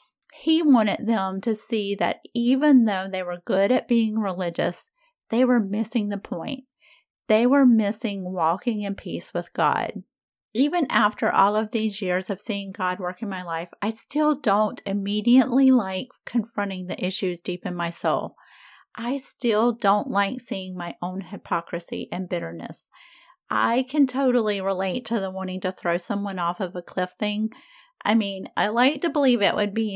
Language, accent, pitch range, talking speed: English, American, 190-250 Hz, 170 wpm